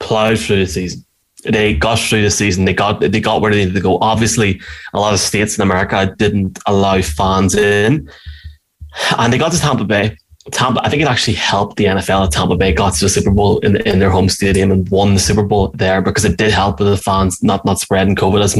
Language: English